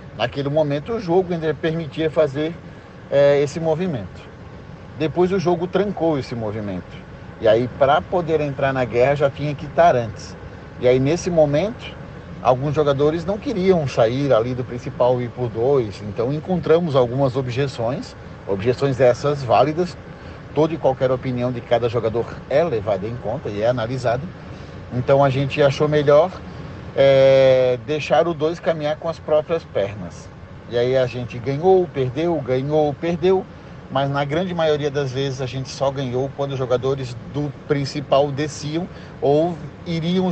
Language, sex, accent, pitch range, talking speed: Portuguese, male, Brazilian, 125-160 Hz, 155 wpm